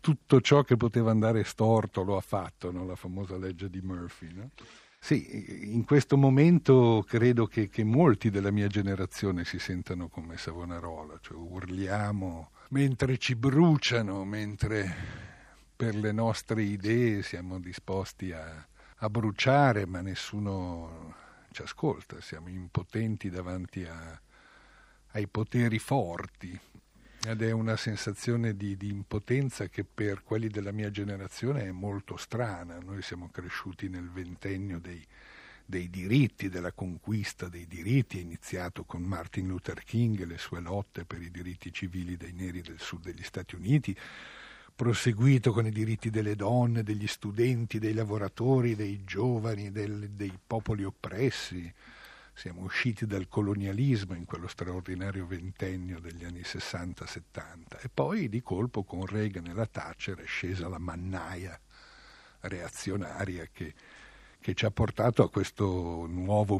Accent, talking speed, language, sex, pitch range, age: native, 140 wpm, Italian, male, 90-110 Hz, 50-69